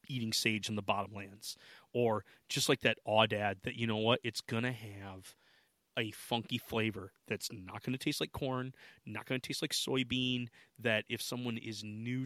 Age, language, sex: 30-49, English, male